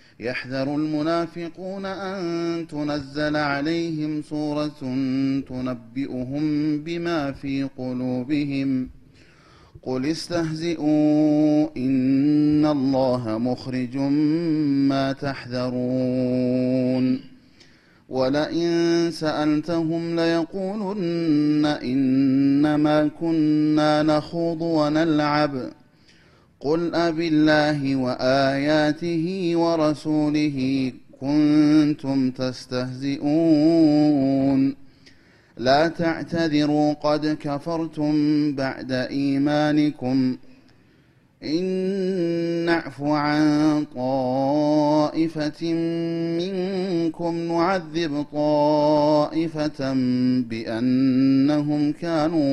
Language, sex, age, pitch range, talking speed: Amharic, male, 30-49, 135-160 Hz, 50 wpm